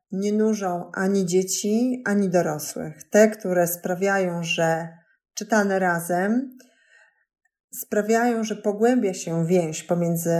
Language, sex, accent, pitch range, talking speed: Polish, female, native, 175-225 Hz, 105 wpm